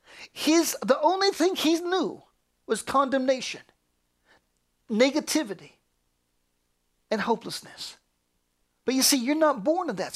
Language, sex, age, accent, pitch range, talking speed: English, male, 40-59, American, 185-255 Hz, 110 wpm